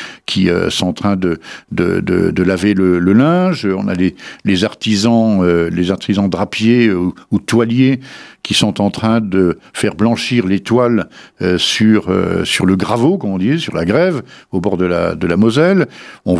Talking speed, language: 175 wpm, French